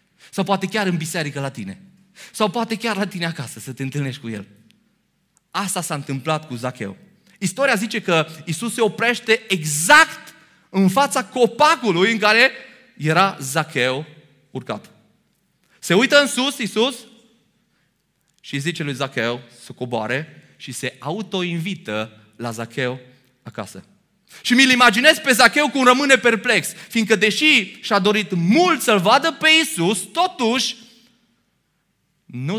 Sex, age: male, 30-49